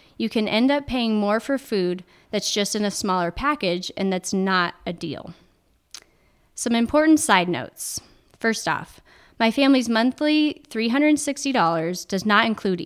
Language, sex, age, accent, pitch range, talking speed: English, female, 20-39, American, 185-220 Hz, 150 wpm